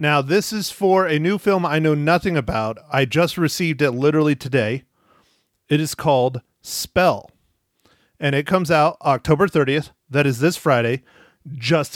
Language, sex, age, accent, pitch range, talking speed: English, male, 30-49, American, 130-165 Hz, 160 wpm